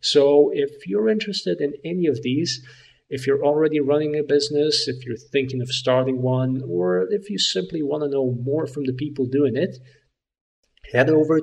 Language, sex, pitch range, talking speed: English, male, 120-145 Hz, 185 wpm